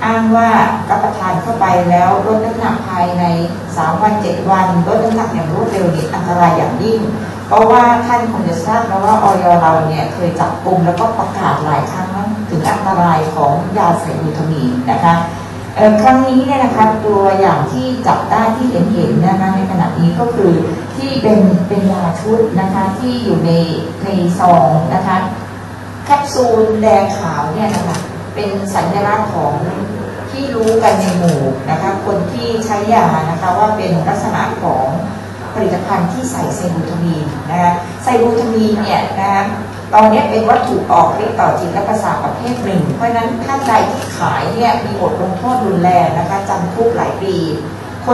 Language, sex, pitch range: Thai, female, 175-225 Hz